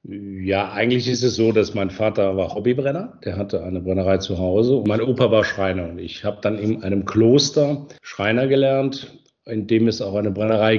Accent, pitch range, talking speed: German, 95-115 Hz, 200 wpm